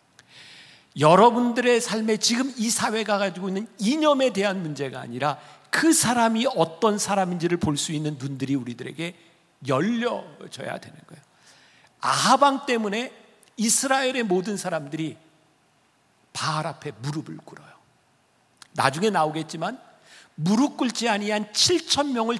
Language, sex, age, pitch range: Korean, male, 50-69, 160-230 Hz